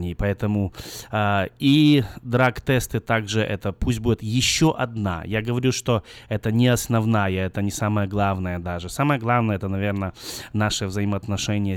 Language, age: Russian, 20-39